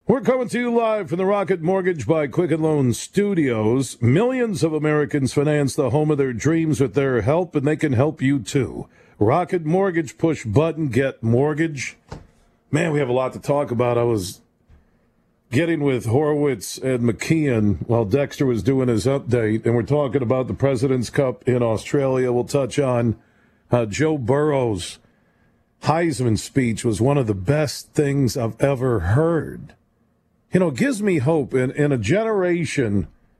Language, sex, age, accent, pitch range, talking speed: English, male, 50-69, American, 120-155 Hz, 170 wpm